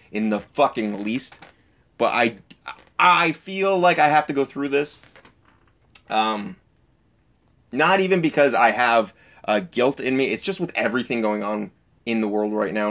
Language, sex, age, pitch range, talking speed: English, male, 20-39, 110-145 Hz, 170 wpm